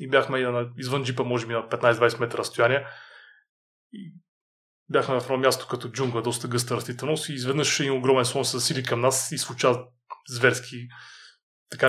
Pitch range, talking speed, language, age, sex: 120-140 Hz, 165 wpm, Bulgarian, 20-39, male